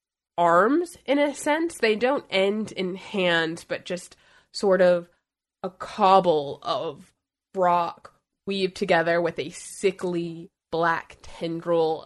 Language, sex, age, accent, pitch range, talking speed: English, female, 20-39, American, 170-230 Hz, 120 wpm